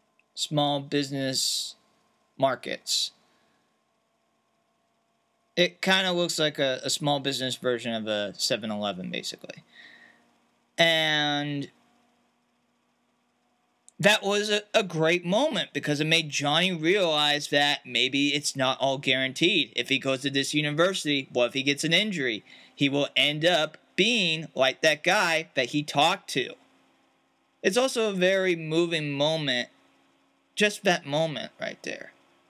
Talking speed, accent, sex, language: 130 wpm, American, male, English